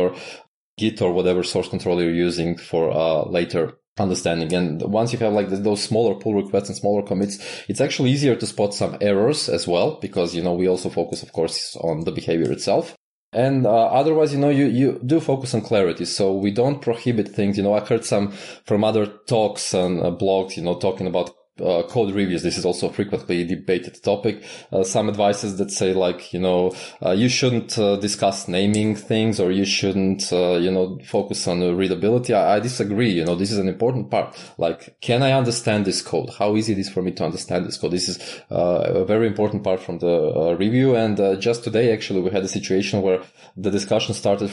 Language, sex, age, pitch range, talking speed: English, male, 20-39, 95-115 Hz, 220 wpm